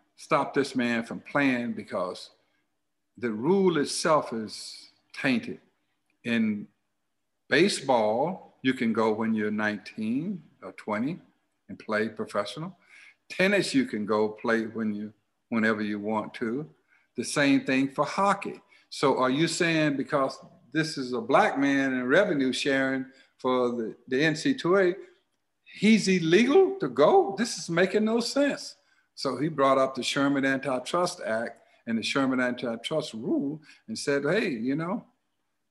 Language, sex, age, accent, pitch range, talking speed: English, male, 60-79, American, 120-175 Hz, 140 wpm